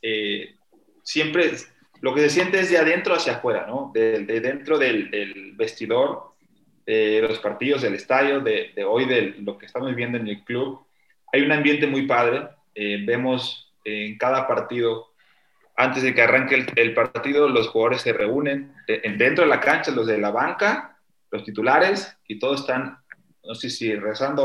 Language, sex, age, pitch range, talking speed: Spanish, male, 30-49, 120-155 Hz, 180 wpm